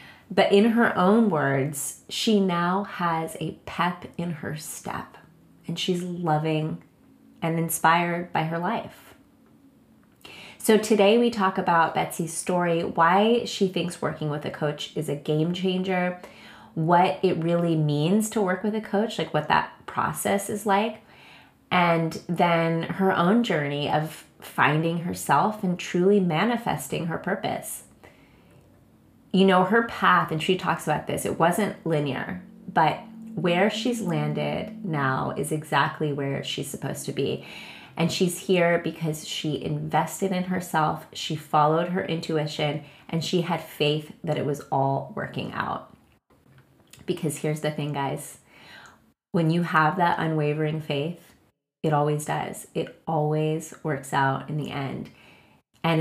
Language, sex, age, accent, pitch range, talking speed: English, female, 30-49, American, 155-185 Hz, 145 wpm